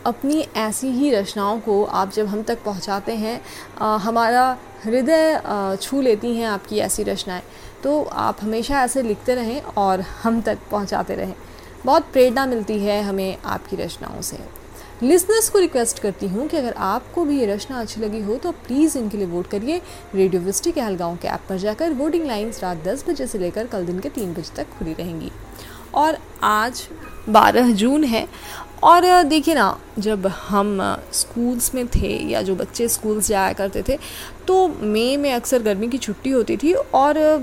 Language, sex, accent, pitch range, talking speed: Hindi, female, native, 205-270 Hz, 180 wpm